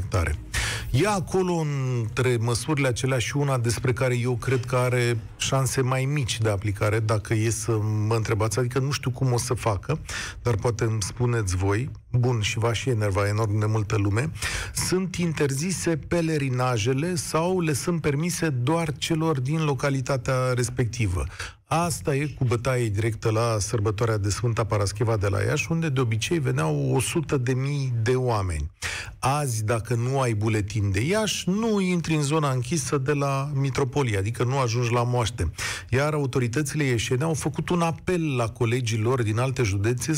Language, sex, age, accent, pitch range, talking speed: Romanian, male, 40-59, native, 115-150 Hz, 160 wpm